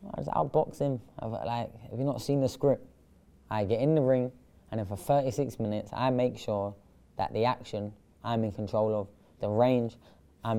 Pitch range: 105-120 Hz